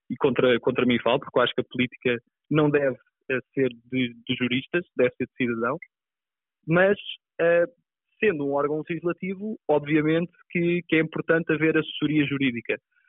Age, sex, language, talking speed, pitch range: 20-39, male, Portuguese, 165 wpm, 145-190 Hz